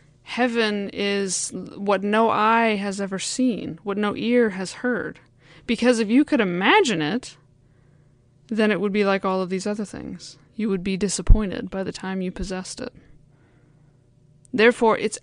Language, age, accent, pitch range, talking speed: English, 20-39, American, 175-225 Hz, 160 wpm